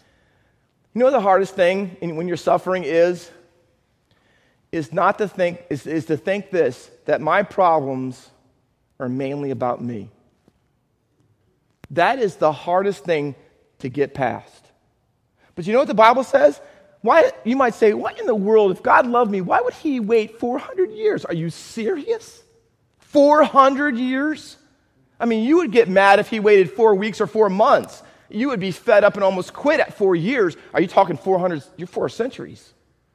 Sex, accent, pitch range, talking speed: male, American, 155-230 Hz, 170 wpm